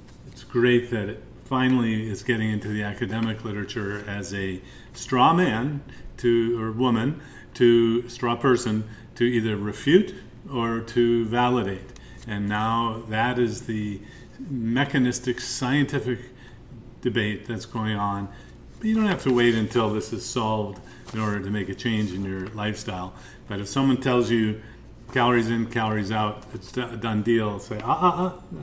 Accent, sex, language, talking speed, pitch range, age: American, male, English, 150 wpm, 105-125 Hz, 40-59